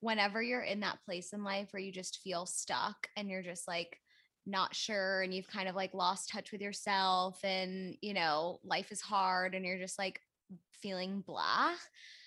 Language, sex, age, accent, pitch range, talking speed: English, female, 10-29, American, 200-255 Hz, 190 wpm